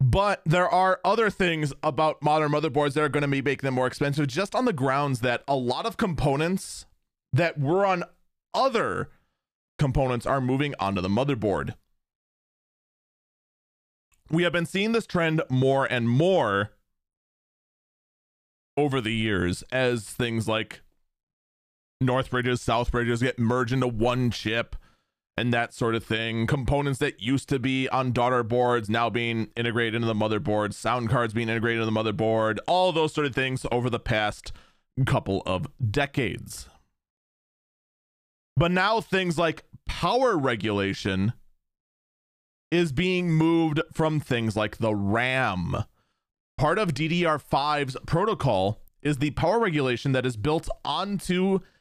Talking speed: 140 wpm